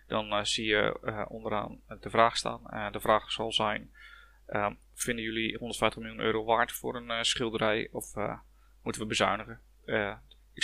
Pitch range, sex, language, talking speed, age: 110-135 Hz, male, Dutch, 180 wpm, 20-39